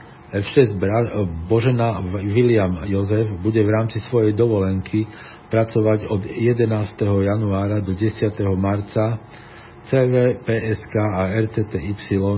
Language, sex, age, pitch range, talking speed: Slovak, male, 50-69, 95-115 Hz, 95 wpm